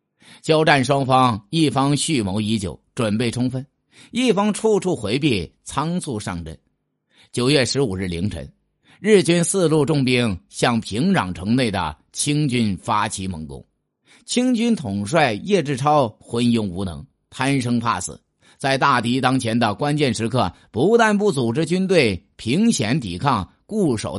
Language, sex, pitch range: Chinese, male, 105-160 Hz